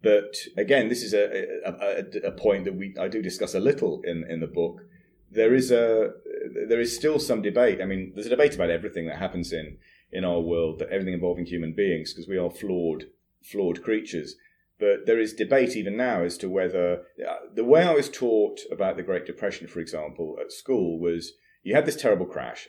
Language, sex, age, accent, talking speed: English, male, 30-49, British, 210 wpm